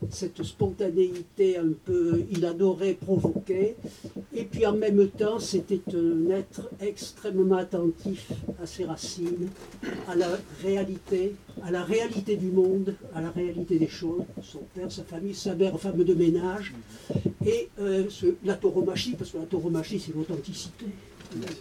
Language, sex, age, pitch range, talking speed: French, male, 60-79, 170-200 Hz, 145 wpm